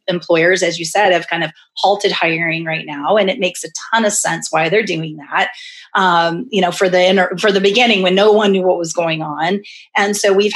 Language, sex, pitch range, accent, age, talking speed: English, female, 175-210 Hz, American, 30-49, 240 wpm